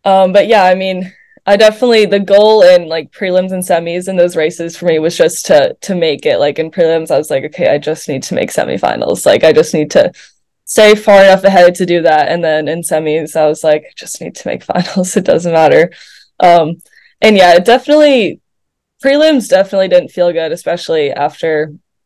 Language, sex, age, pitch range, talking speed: English, female, 10-29, 165-200 Hz, 210 wpm